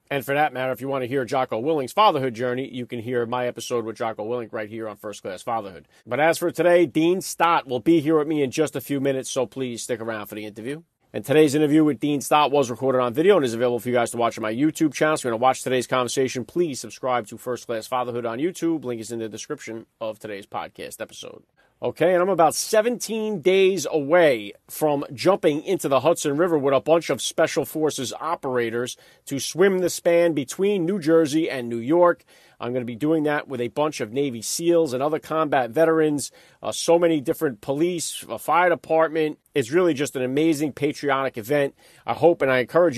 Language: English